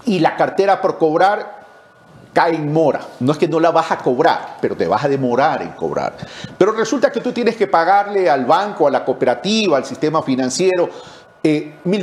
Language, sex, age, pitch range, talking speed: English, male, 50-69, 150-230 Hz, 195 wpm